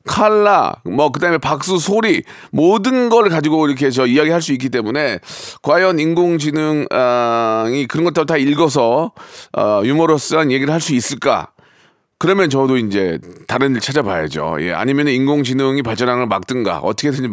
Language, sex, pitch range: Korean, male, 130-195 Hz